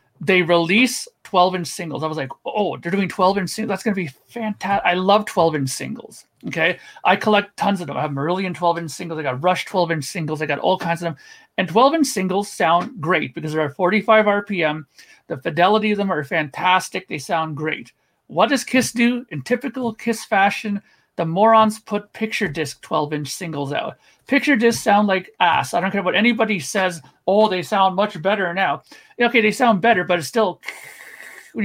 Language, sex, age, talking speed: English, male, 40-59, 195 wpm